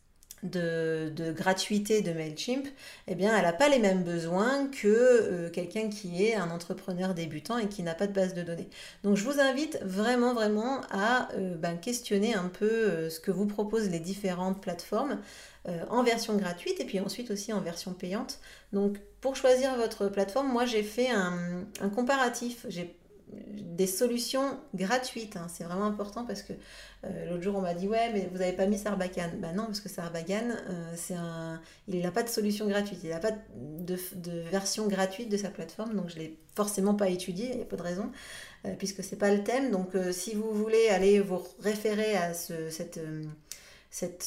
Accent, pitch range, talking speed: French, 180-220 Hz, 205 wpm